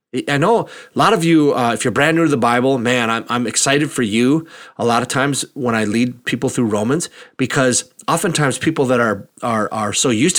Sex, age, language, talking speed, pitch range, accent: male, 30-49, English, 225 wpm, 130-170 Hz, American